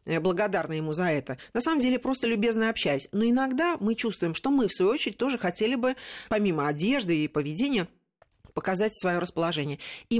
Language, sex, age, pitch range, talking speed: Russian, female, 40-59, 175-235 Hz, 180 wpm